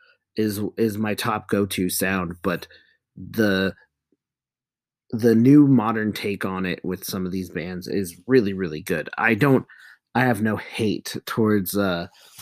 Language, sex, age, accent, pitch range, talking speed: English, male, 30-49, American, 95-115 Hz, 150 wpm